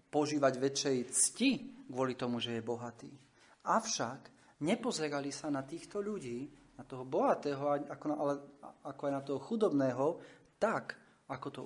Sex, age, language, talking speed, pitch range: male, 40-59, Slovak, 145 wpm, 130-155 Hz